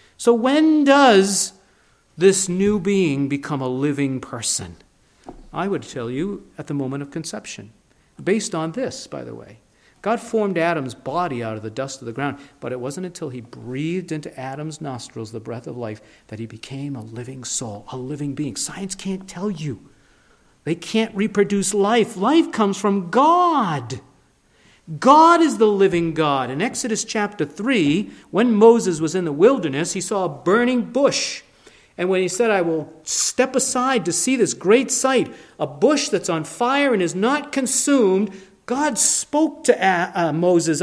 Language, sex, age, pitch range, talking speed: English, male, 50-69, 140-215 Hz, 170 wpm